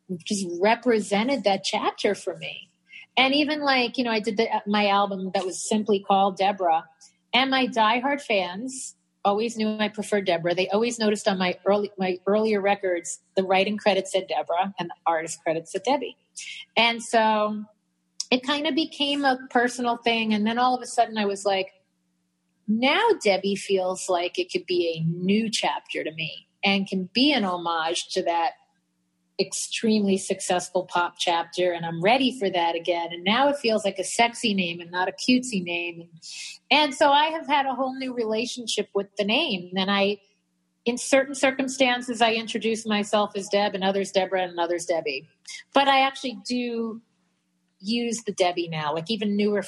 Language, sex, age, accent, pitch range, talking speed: English, female, 30-49, American, 180-235 Hz, 180 wpm